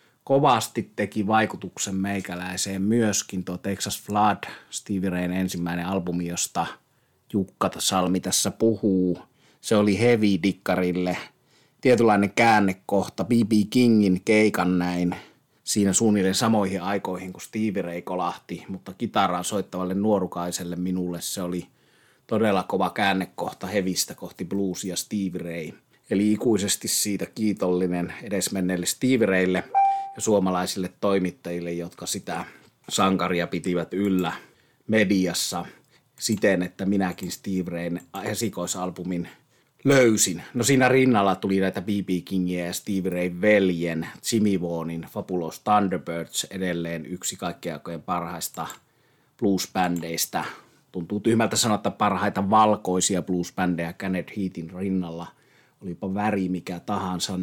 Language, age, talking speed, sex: Finnish, 30-49, 110 wpm, male